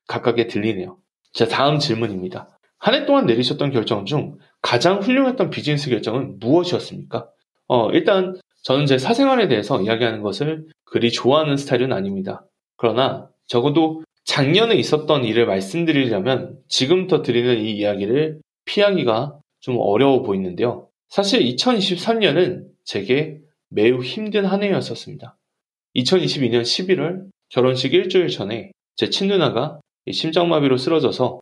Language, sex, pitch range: Korean, male, 120-180 Hz